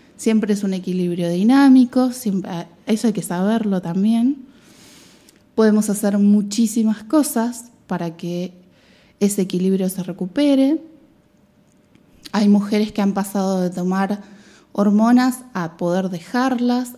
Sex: female